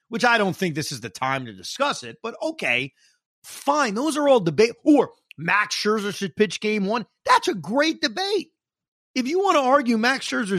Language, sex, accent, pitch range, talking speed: English, male, American, 175-275 Hz, 205 wpm